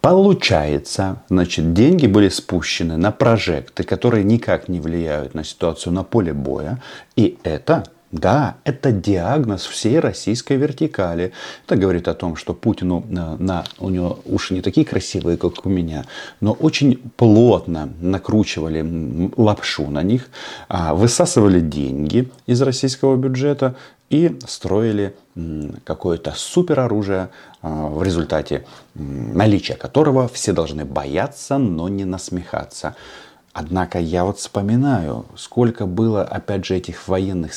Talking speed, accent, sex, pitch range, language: 125 wpm, native, male, 85-110 Hz, Russian